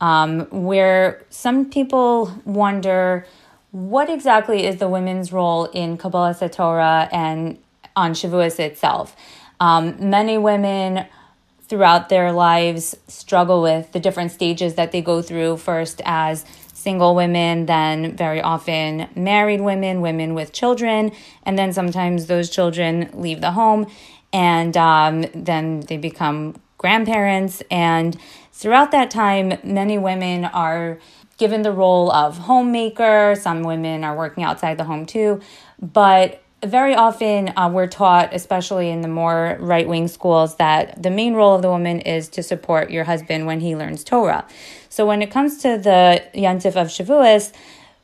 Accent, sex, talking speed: American, female, 145 wpm